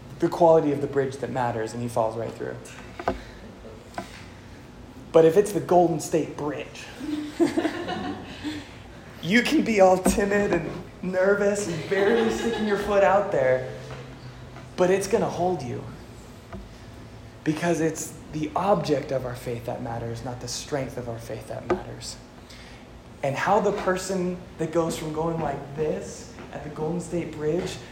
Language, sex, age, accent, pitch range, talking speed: English, male, 20-39, American, 125-170 Hz, 155 wpm